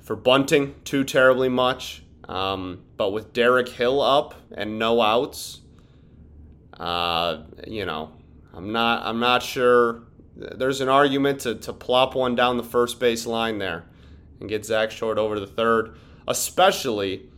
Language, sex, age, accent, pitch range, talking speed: English, male, 30-49, American, 100-125 Hz, 150 wpm